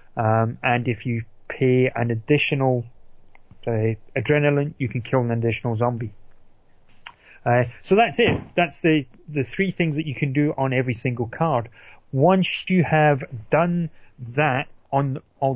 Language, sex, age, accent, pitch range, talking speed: English, male, 30-49, British, 125-150 Hz, 150 wpm